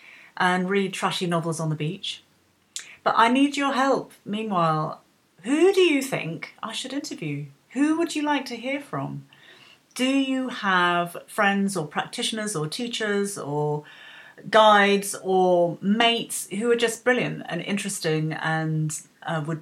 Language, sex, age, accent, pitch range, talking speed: English, female, 30-49, British, 155-225 Hz, 145 wpm